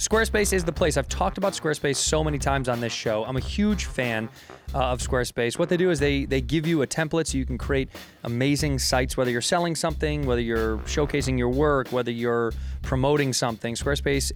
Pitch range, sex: 120-150 Hz, male